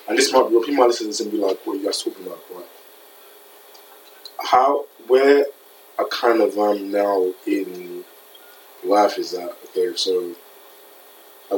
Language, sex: English, male